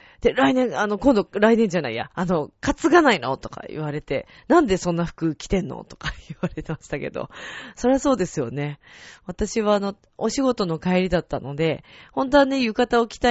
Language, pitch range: Japanese, 160-255 Hz